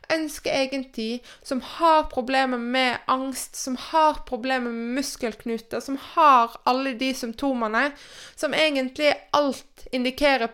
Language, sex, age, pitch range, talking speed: Danish, female, 20-39, 225-275 Hz, 120 wpm